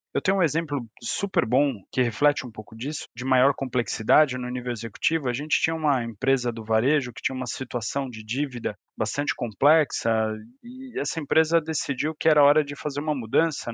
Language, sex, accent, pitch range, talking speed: Portuguese, male, Brazilian, 120-160 Hz, 190 wpm